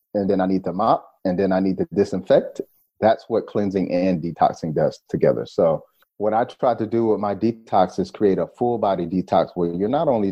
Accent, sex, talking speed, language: American, male, 215 wpm, English